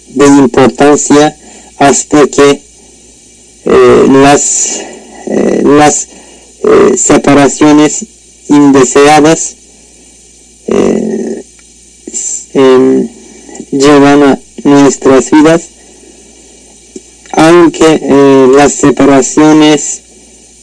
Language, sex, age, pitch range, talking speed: Spanish, male, 50-69, 130-155 Hz, 60 wpm